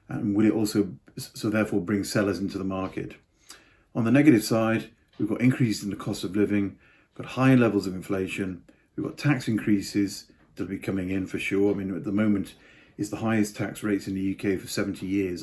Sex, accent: male, British